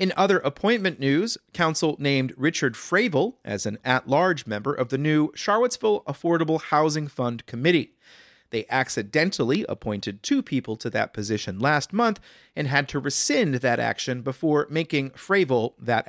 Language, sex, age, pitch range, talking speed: English, male, 30-49, 130-185 Hz, 150 wpm